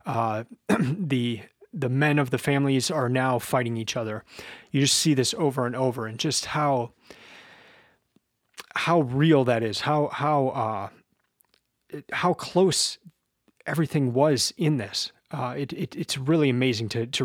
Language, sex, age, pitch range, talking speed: English, male, 30-49, 125-155 Hz, 150 wpm